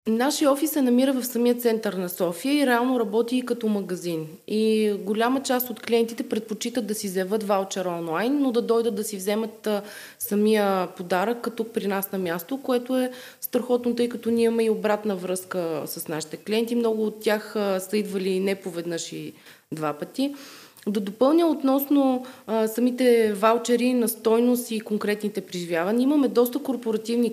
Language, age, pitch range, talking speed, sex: Bulgarian, 20-39, 195-245 Hz, 160 wpm, female